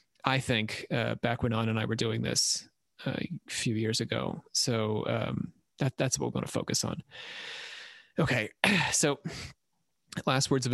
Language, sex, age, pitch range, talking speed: English, male, 30-49, 115-135 Hz, 175 wpm